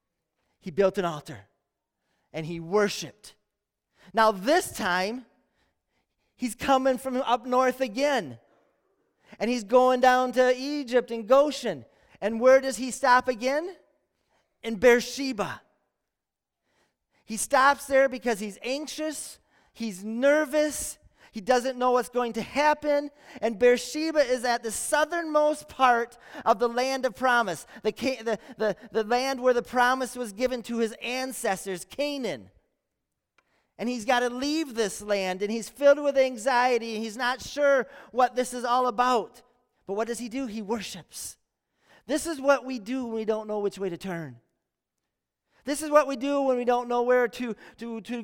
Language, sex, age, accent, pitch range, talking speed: English, male, 30-49, American, 225-270 Hz, 155 wpm